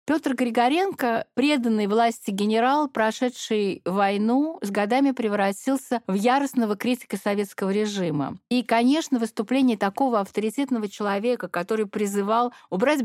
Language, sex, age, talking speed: Russian, female, 50-69, 110 wpm